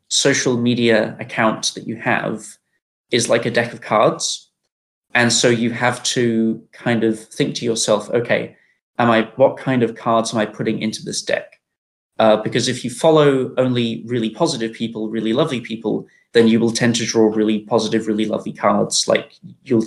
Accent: British